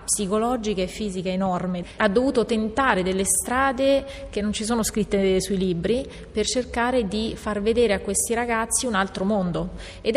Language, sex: Italian, female